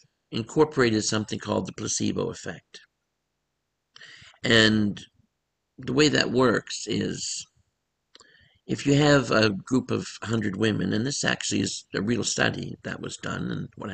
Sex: male